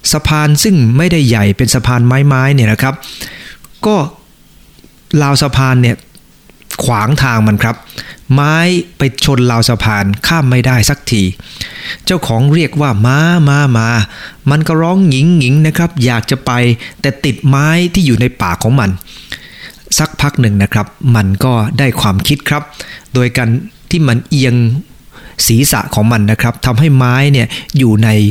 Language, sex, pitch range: English, male, 110-145 Hz